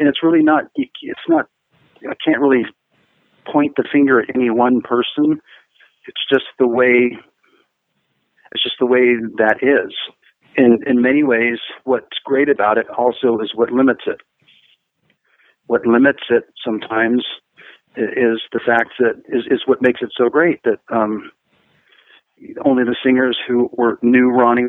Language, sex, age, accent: English, male, 50-69, American